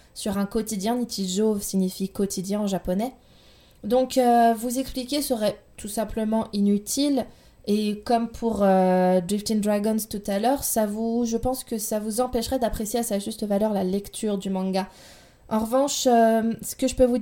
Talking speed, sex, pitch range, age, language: 165 wpm, female, 205-250 Hz, 20-39, French